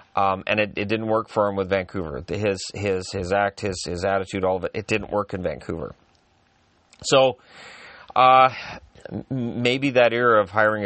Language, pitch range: English, 95-125 Hz